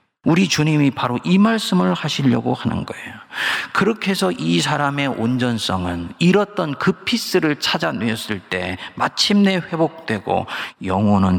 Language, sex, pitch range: Korean, male, 100-150 Hz